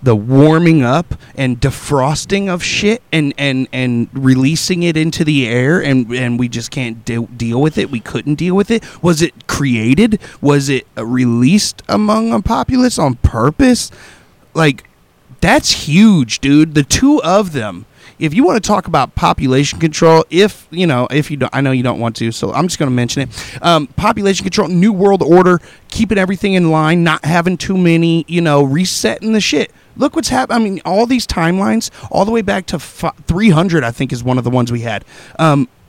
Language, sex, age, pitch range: English, male, 30-49, 125-185 Hz